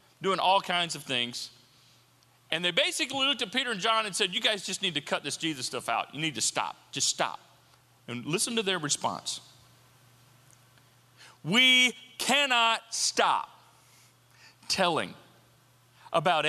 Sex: male